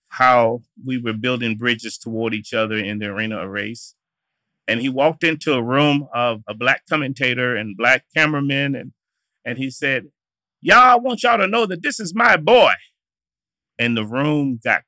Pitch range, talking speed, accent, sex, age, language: 120-155 Hz, 180 wpm, American, male, 30-49, English